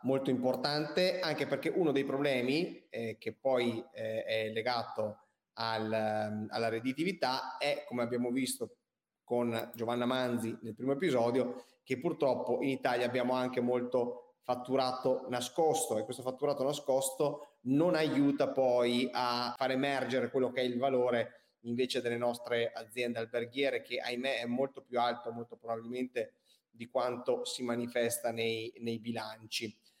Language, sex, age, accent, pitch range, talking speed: Italian, male, 30-49, native, 120-135 Hz, 140 wpm